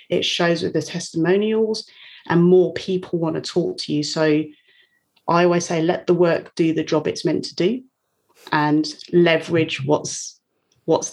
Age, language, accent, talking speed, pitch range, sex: 30-49, English, British, 165 wpm, 160-190 Hz, female